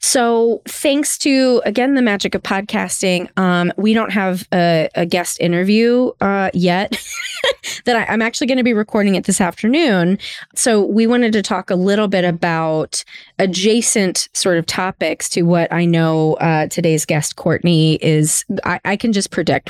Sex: female